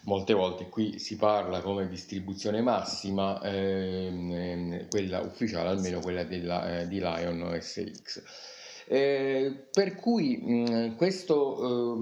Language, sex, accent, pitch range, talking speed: Italian, male, native, 95-120 Hz, 105 wpm